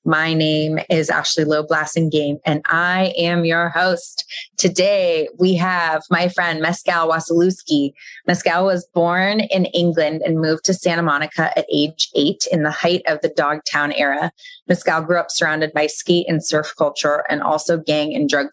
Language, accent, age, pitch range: English, American, 20-39, 155-180 Hz